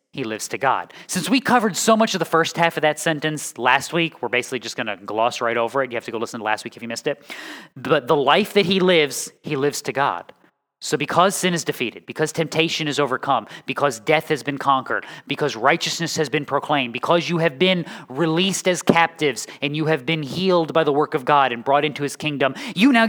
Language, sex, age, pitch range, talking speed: English, male, 20-39, 130-165 Hz, 240 wpm